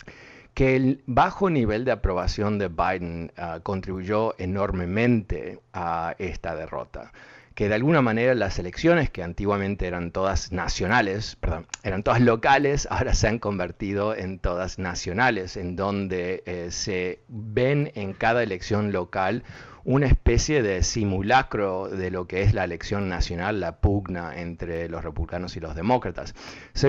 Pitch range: 90-115 Hz